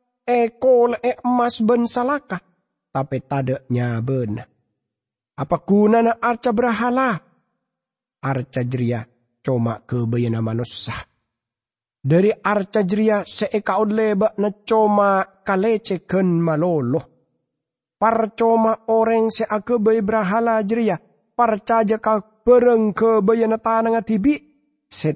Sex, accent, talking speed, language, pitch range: male, Indonesian, 100 wpm, English, 135-215 Hz